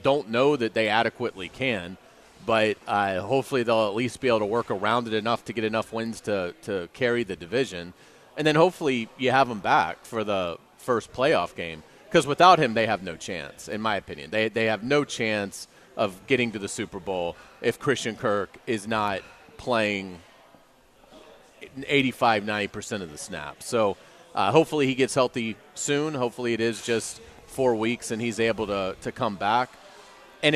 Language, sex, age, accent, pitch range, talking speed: English, male, 30-49, American, 110-145 Hz, 185 wpm